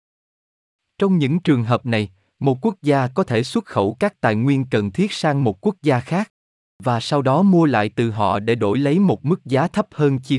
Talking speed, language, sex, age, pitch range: 220 wpm, Vietnamese, male, 20-39, 110-160 Hz